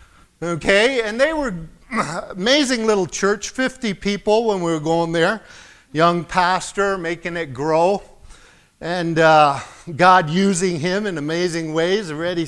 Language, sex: English, male